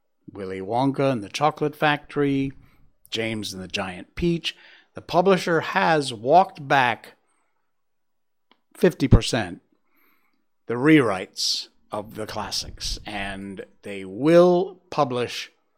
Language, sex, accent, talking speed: English, male, American, 100 wpm